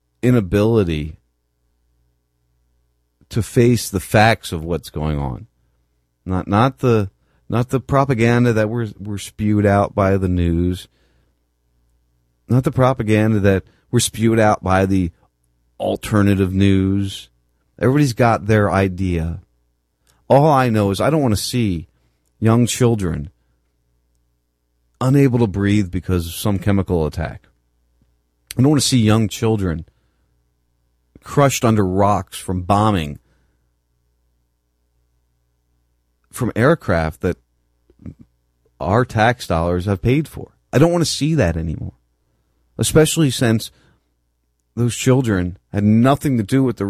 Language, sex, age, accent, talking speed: English, male, 40-59, American, 120 wpm